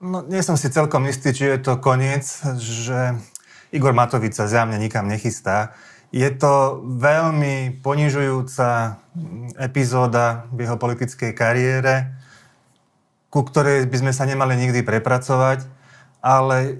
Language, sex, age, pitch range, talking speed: Slovak, male, 30-49, 115-135 Hz, 125 wpm